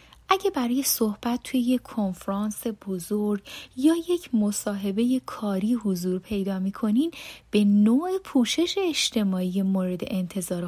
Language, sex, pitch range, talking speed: Persian, female, 195-260 Hz, 110 wpm